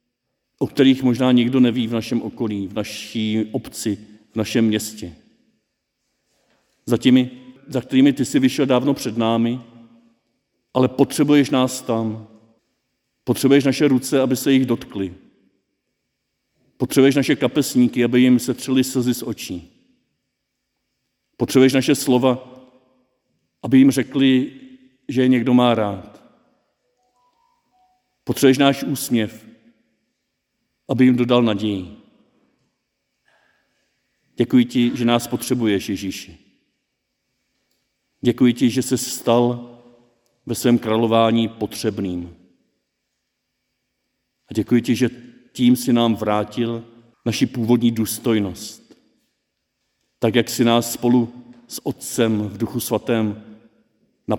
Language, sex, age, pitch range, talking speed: Czech, male, 50-69, 110-130 Hz, 110 wpm